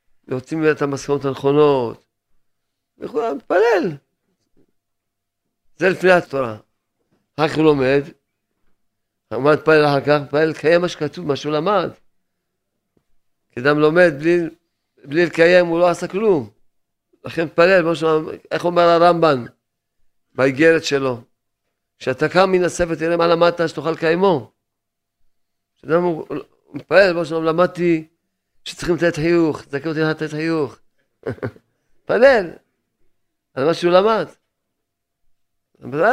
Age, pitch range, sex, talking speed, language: 50-69, 120-170 Hz, male, 110 wpm, Hebrew